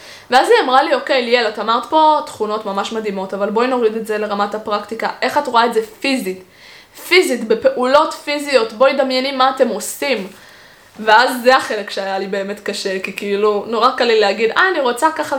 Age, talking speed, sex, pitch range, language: 20-39, 195 wpm, female, 210-285 Hz, Hebrew